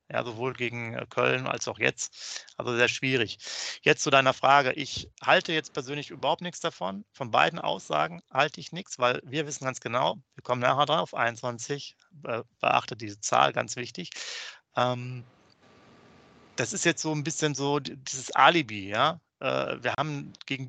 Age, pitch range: 40-59, 120-145 Hz